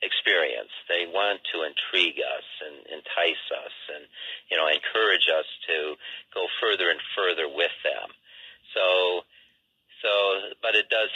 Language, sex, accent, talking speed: English, male, American, 140 wpm